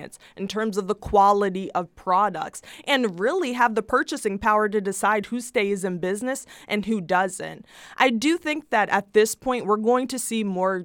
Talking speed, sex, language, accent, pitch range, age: 190 wpm, female, English, American, 185-230 Hz, 20-39